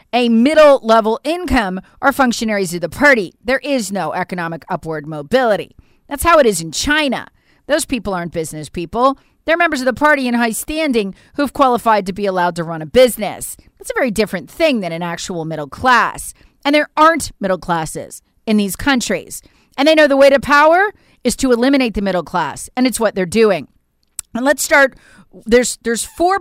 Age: 40-59